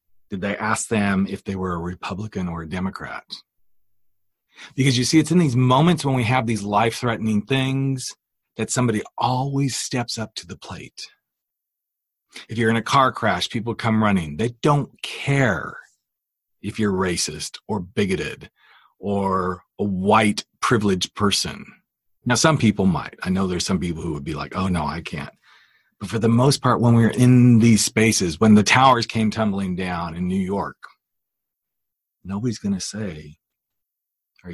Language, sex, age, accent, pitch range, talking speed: English, male, 40-59, American, 100-135 Hz, 165 wpm